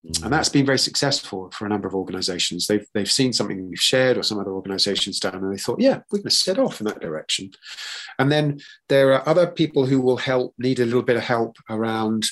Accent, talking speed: British, 240 wpm